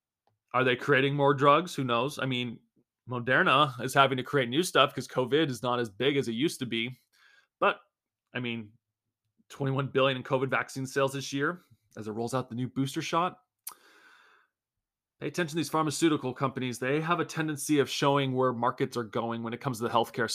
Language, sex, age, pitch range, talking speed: English, male, 30-49, 115-145 Hz, 200 wpm